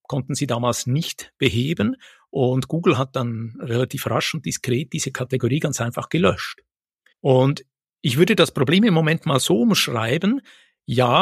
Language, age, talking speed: German, 60-79, 155 wpm